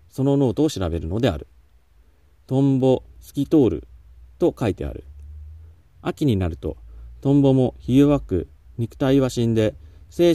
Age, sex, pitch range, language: 40-59, male, 85-125 Hz, Japanese